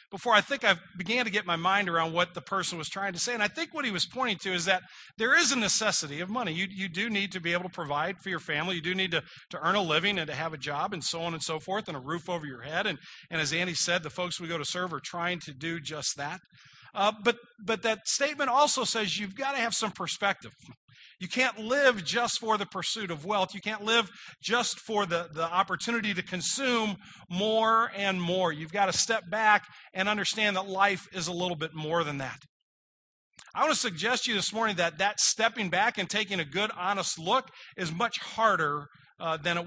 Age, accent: 40-59, American